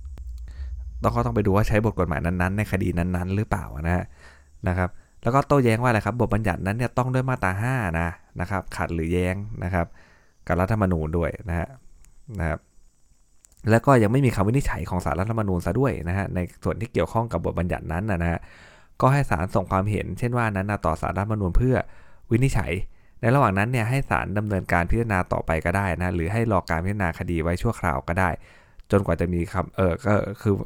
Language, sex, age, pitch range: Thai, male, 20-39, 85-110 Hz